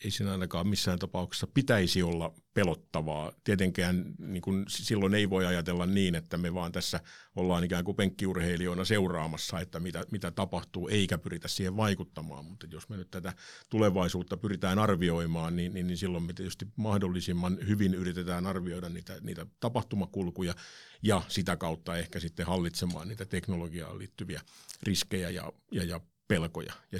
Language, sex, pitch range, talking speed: Finnish, male, 85-95 Hz, 150 wpm